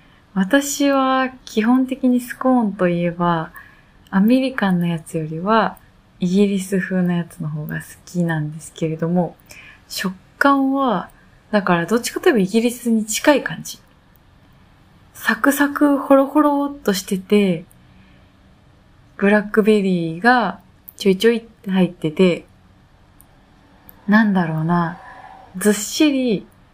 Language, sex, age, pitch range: Japanese, female, 20-39, 170-230 Hz